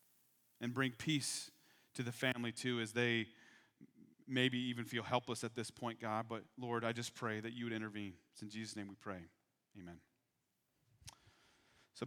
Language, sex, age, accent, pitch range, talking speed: English, male, 30-49, American, 120-165 Hz, 170 wpm